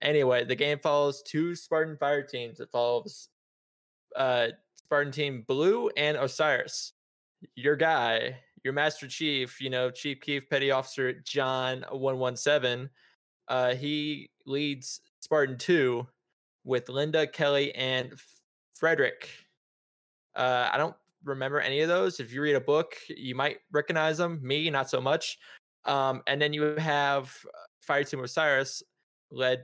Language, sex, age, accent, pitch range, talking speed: English, male, 20-39, American, 125-150 Hz, 145 wpm